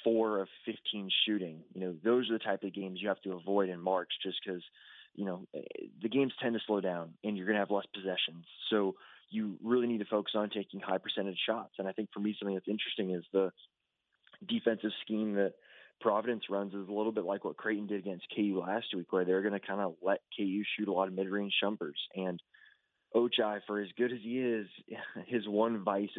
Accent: American